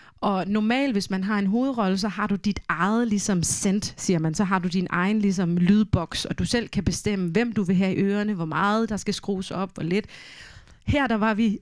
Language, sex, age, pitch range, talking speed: Danish, female, 30-49, 195-245 Hz, 240 wpm